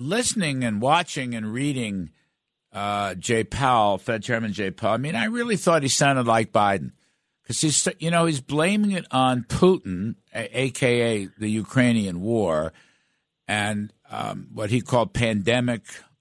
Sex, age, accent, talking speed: male, 60-79, American, 150 wpm